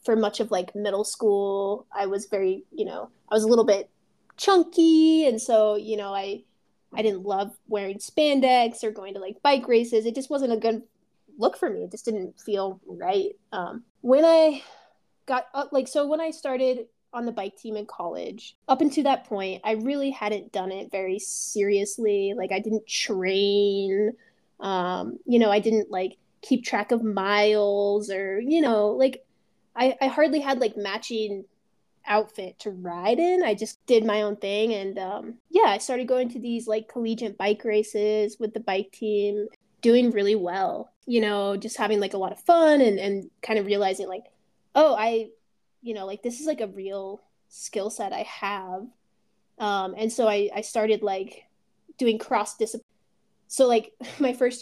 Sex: female